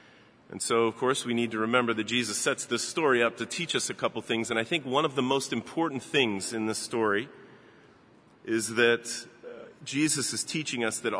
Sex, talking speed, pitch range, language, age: male, 210 wpm, 115-135 Hz, English, 30-49